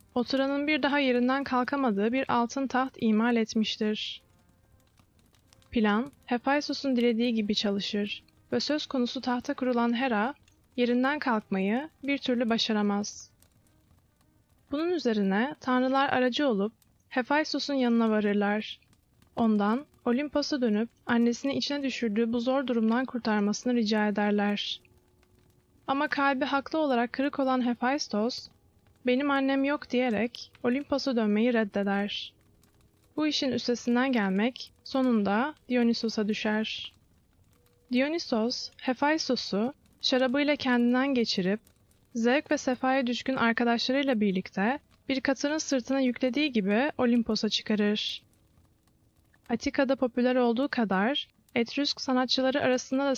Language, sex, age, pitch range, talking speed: Turkish, female, 20-39, 215-270 Hz, 105 wpm